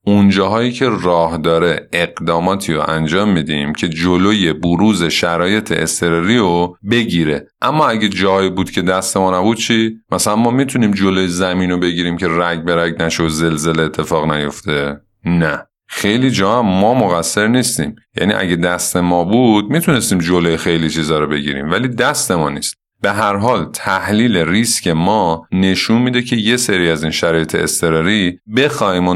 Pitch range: 80-110 Hz